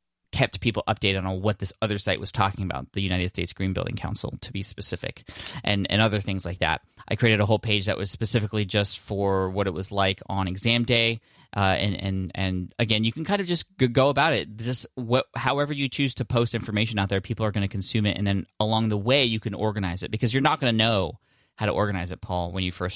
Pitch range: 95-115 Hz